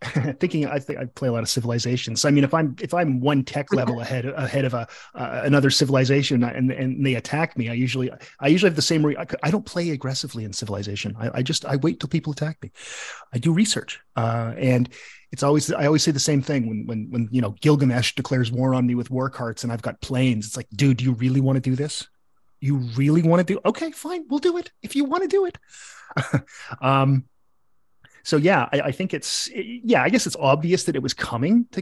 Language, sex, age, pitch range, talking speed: English, male, 30-49, 125-165 Hz, 245 wpm